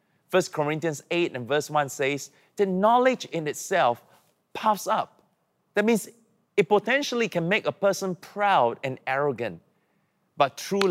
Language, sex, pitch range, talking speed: English, male, 130-195 Hz, 145 wpm